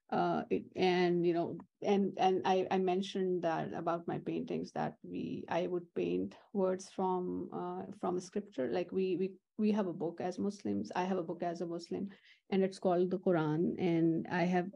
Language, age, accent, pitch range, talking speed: English, 30-49, Indian, 175-200 Hz, 200 wpm